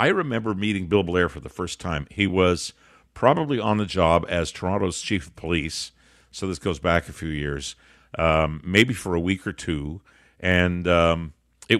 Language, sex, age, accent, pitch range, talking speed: English, male, 50-69, American, 85-110 Hz, 190 wpm